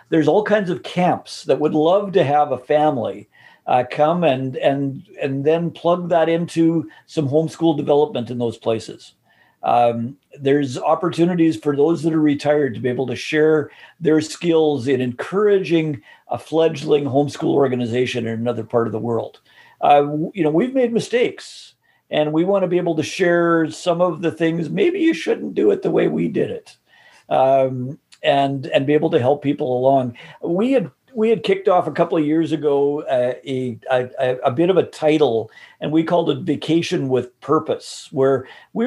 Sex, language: male, English